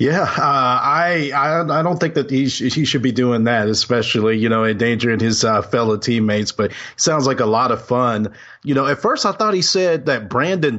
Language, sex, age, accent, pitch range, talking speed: English, male, 40-59, American, 110-130 Hz, 230 wpm